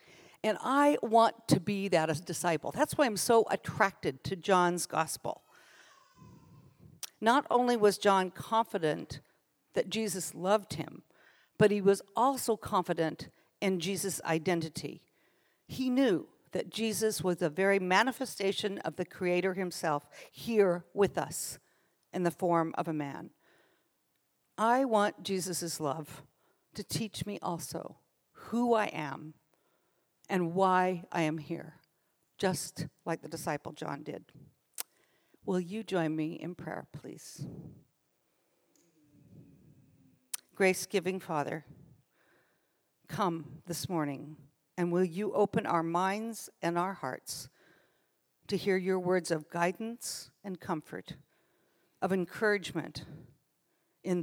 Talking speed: 120 wpm